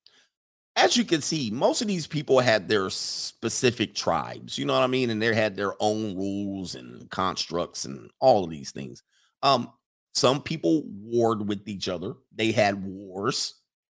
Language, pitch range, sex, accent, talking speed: English, 105-140 Hz, male, American, 170 wpm